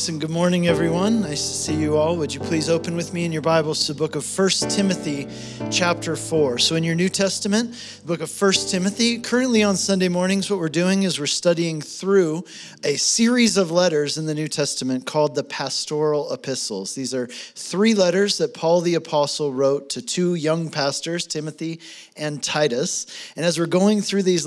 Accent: American